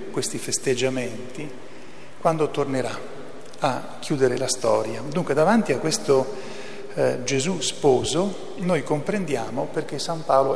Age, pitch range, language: 40-59, 135-160 Hz, Italian